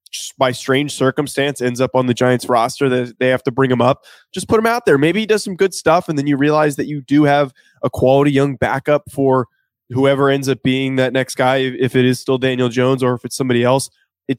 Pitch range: 130-160 Hz